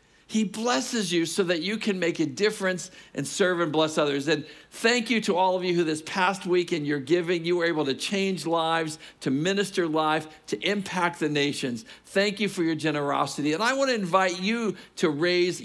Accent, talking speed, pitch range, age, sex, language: American, 210 wpm, 150-180 Hz, 50-69, male, English